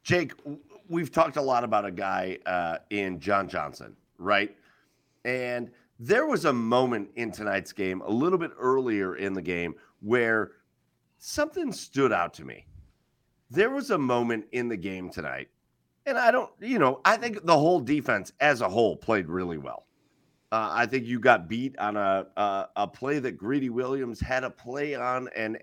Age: 50-69